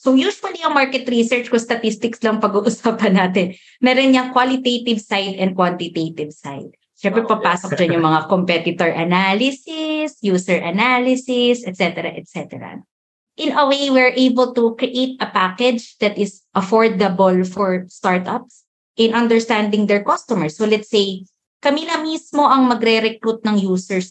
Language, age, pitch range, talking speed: Filipino, 20-39, 180-245 Hz, 135 wpm